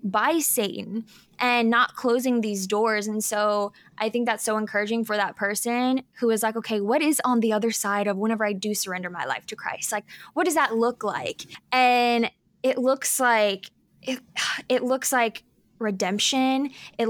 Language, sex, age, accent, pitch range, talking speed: English, female, 10-29, American, 215-260 Hz, 185 wpm